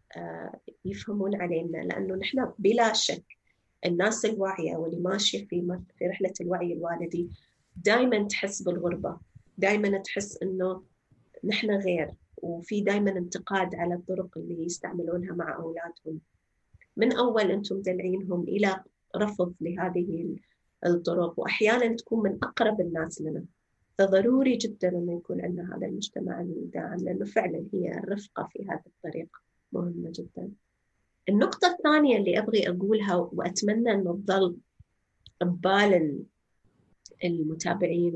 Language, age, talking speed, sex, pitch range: Arabic, 30-49, 115 wpm, female, 175-210 Hz